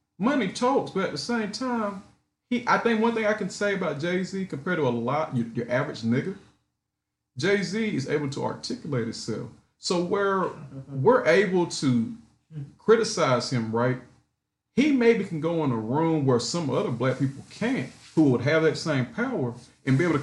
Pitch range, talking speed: 125-195 Hz, 185 wpm